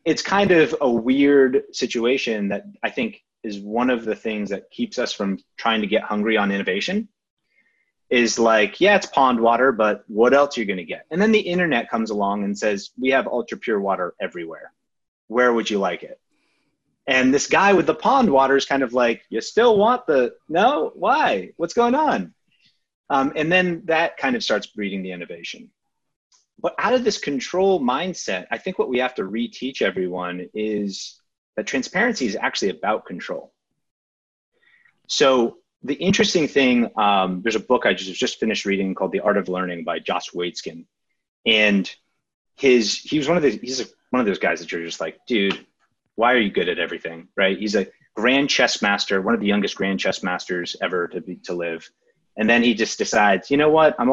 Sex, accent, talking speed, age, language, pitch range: male, American, 200 wpm, 30-49, English, 100-160 Hz